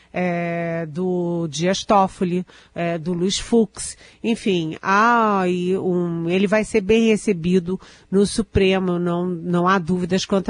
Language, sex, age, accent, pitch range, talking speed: Portuguese, female, 40-59, Brazilian, 165-195 Hz, 130 wpm